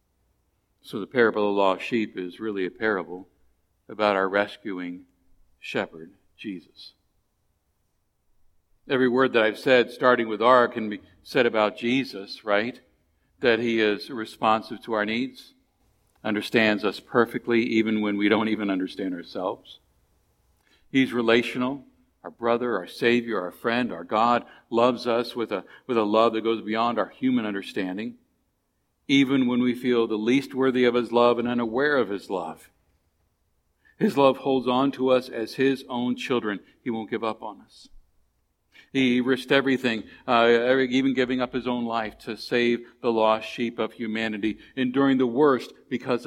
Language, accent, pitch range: English, American, 105-125 Hz